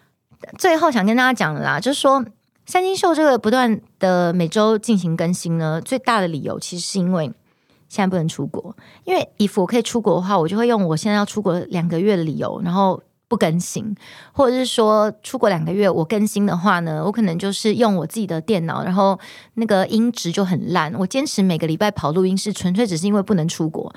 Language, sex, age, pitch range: Chinese, female, 30-49, 170-230 Hz